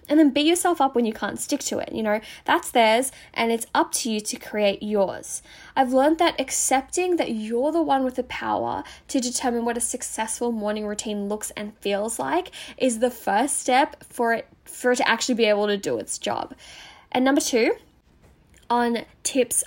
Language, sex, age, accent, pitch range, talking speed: English, female, 10-29, Australian, 225-305 Hz, 200 wpm